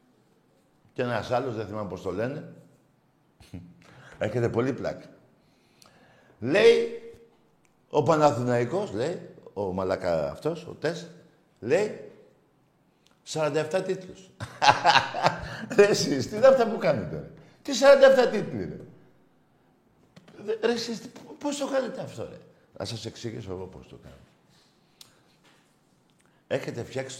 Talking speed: 105 wpm